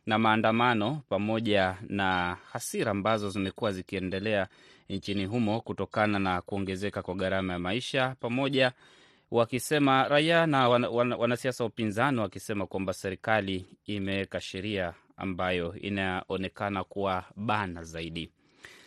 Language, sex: Swahili, male